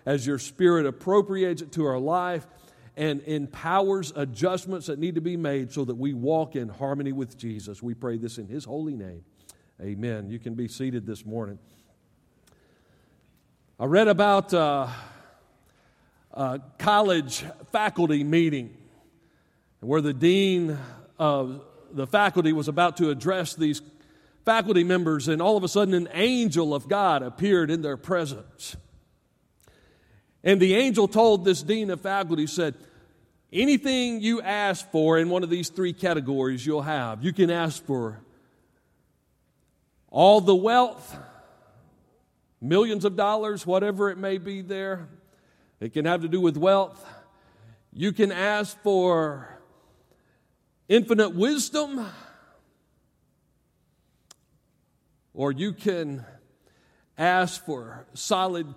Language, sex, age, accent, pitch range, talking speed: English, male, 50-69, American, 135-190 Hz, 130 wpm